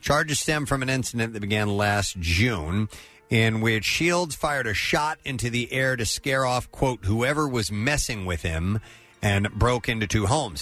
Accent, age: American, 40-59